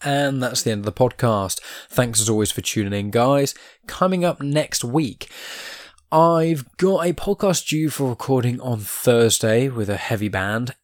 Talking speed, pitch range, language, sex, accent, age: 170 wpm, 95-125 Hz, English, male, British, 10-29